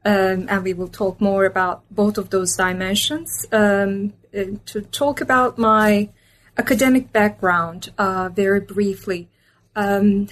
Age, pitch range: 20-39, 185-220 Hz